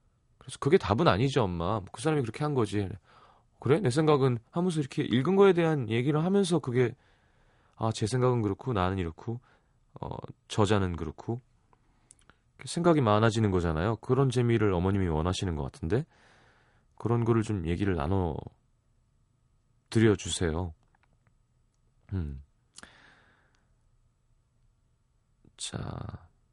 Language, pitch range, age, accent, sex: Korean, 95-125 Hz, 30-49, native, male